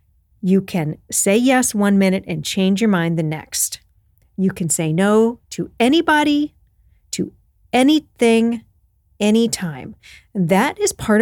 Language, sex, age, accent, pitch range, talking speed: English, female, 40-59, American, 175-235 Hz, 130 wpm